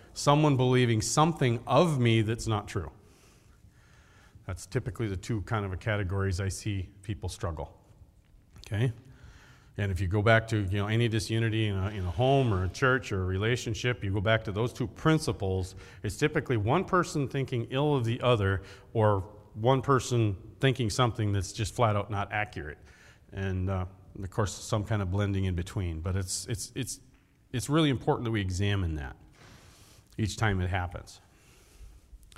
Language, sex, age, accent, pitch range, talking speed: English, male, 40-59, American, 95-125 Hz, 175 wpm